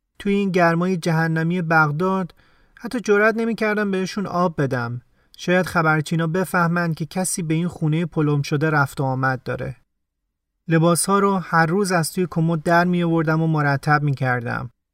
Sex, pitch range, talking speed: male, 140-180 Hz, 155 wpm